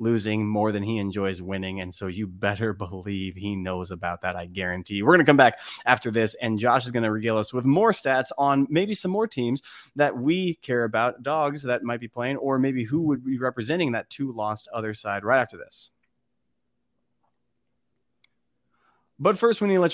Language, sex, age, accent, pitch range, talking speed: English, male, 30-49, American, 110-145 Hz, 210 wpm